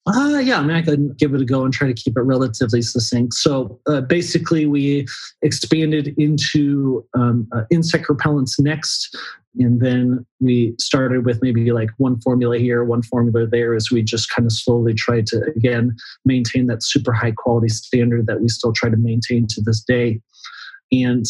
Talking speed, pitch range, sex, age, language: 185 wpm, 115-130 Hz, male, 30-49, English